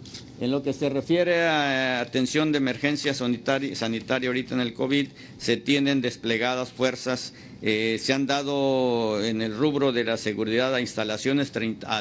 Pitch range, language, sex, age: 115-140 Hz, Spanish, male, 50-69